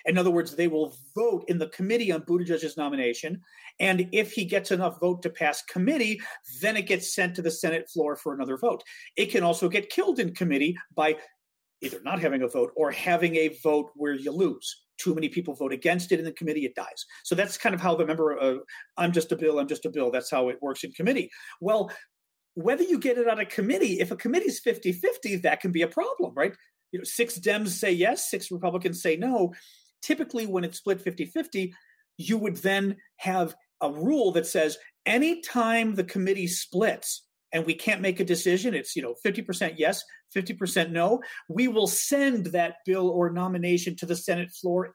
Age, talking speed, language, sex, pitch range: 40-59, 210 wpm, English, male, 165-220 Hz